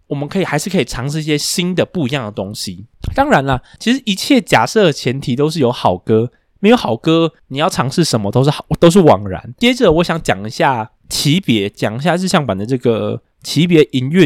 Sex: male